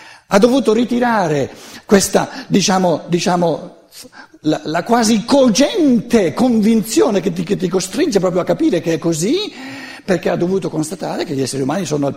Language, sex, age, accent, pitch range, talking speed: Italian, male, 60-79, native, 135-220 Hz, 160 wpm